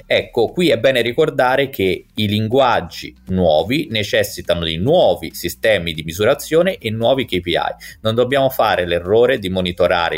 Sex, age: male, 30-49